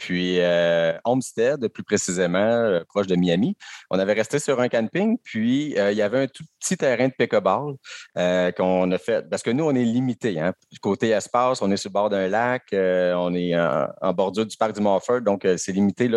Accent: Canadian